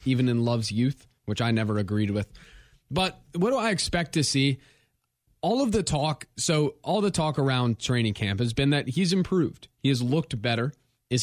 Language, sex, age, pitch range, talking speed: English, male, 20-39, 115-145 Hz, 200 wpm